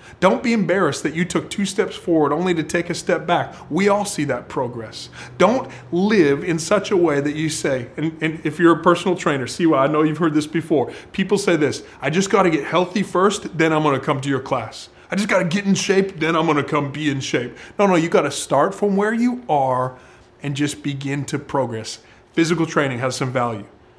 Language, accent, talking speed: English, American, 230 wpm